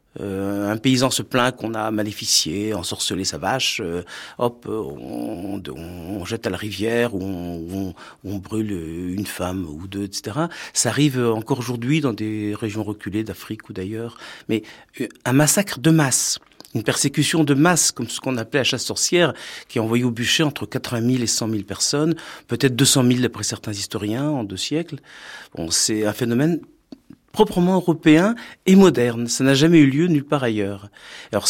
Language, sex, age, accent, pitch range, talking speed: French, male, 50-69, French, 110-155 Hz, 185 wpm